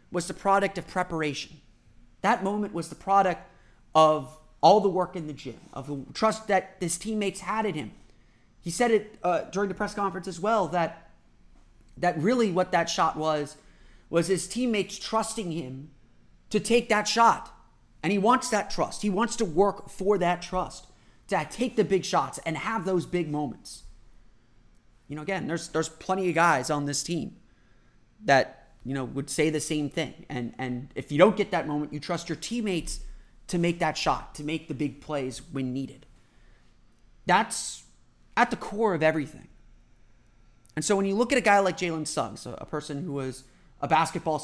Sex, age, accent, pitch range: male, 30-49, American, 135-190 Hz